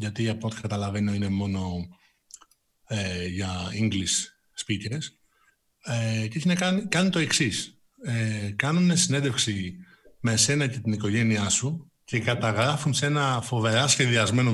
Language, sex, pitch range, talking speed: Greek, male, 110-155 Hz, 125 wpm